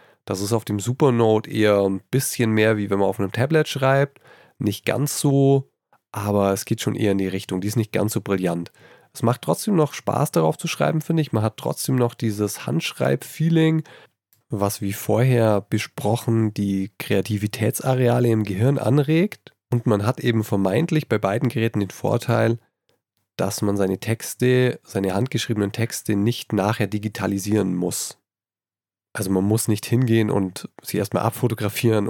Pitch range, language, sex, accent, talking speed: 105-130 Hz, German, male, German, 165 wpm